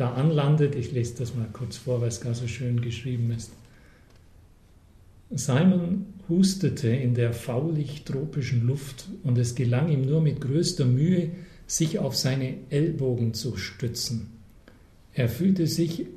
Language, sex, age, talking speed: German, male, 50-69, 140 wpm